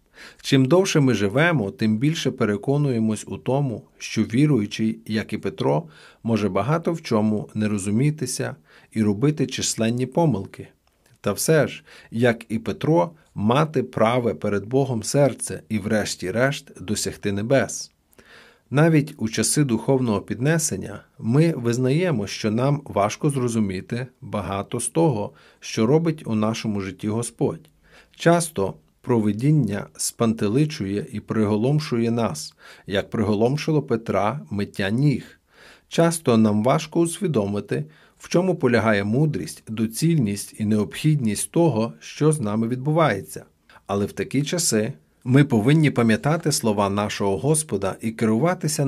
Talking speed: 120 wpm